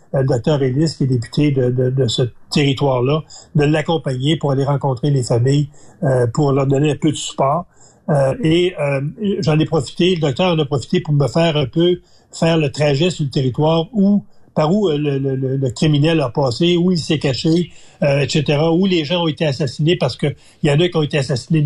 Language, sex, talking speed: French, male, 215 wpm